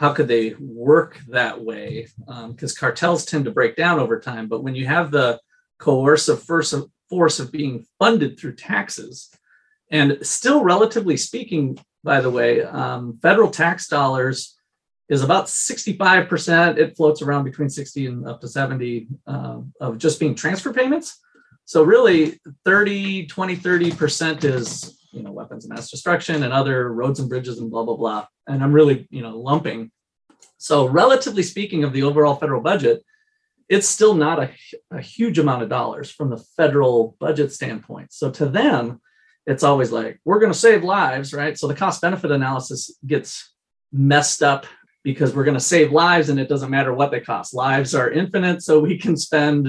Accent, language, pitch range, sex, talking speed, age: American, English, 130-170 Hz, male, 175 wpm, 30-49